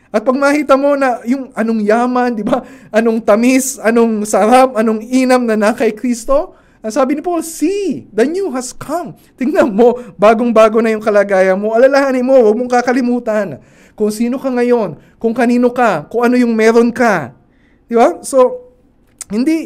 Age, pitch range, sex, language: 20-39, 195-255 Hz, male, Filipino